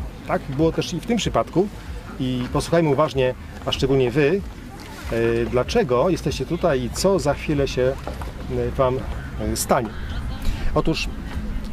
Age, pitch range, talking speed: 40-59, 115-170 Hz, 125 wpm